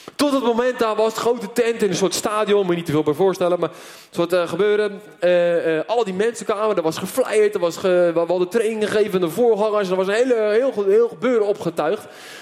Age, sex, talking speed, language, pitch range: 20-39, male, 235 wpm, Dutch, 175-235 Hz